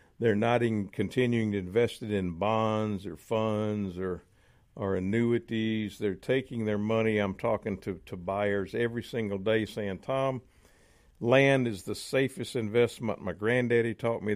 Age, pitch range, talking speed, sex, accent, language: 50-69, 100-120 Hz, 150 wpm, male, American, English